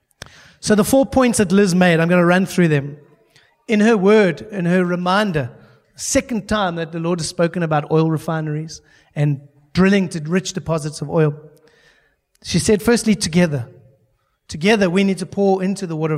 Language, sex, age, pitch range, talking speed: German, male, 30-49, 155-200 Hz, 180 wpm